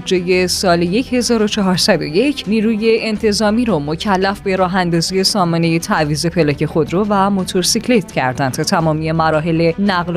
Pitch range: 170-240 Hz